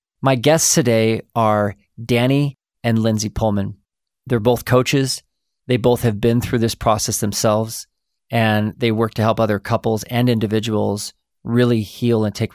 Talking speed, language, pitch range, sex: 155 wpm, English, 105-125 Hz, male